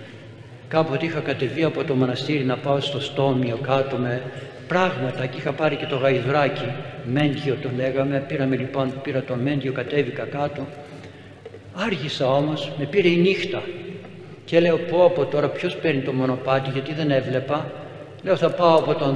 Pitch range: 135-195 Hz